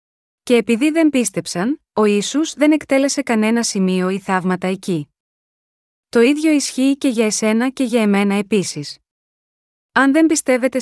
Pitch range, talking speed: 200-260 Hz, 145 wpm